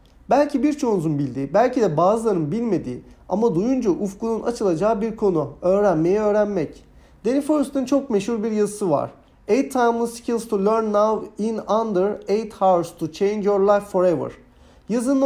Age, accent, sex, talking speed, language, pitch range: 40-59, native, male, 150 wpm, Turkish, 180-245 Hz